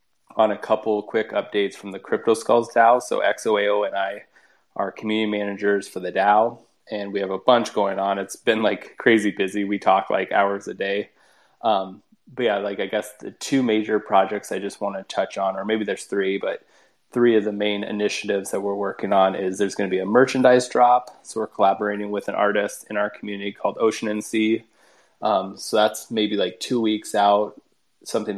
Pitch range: 100-110 Hz